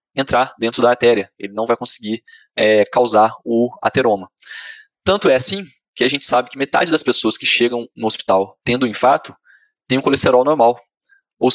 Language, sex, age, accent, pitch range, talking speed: Portuguese, male, 20-39, Brazilian, 110-150 Hz, 180 wpm